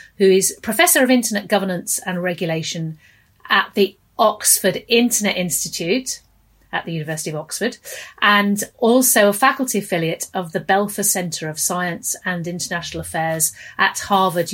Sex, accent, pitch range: female, British, 170-210 Hz